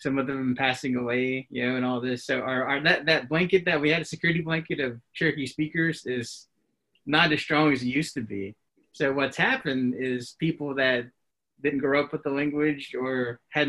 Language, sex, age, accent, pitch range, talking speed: English, male, 30-49, American, 125-150 Hz, 210 wpm